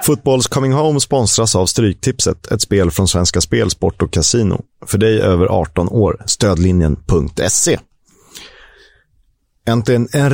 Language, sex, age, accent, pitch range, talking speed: Swedish, male, 30-49, native, 100-125 Hz, 130 wpm